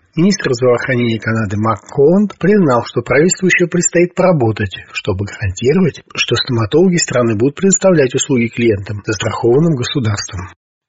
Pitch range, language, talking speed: 115-145 Hz, Russian, 120 wpm